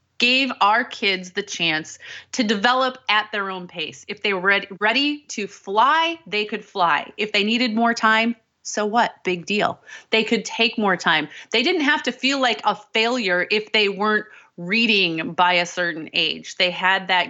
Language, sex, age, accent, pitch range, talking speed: English, female, 30-49, American, 185-235 Hz, 185 wpm